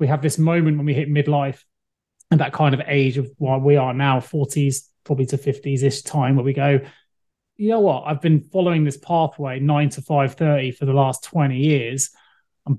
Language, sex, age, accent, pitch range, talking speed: English, male, 20-39, British, 140-160 Hz, 205 wpm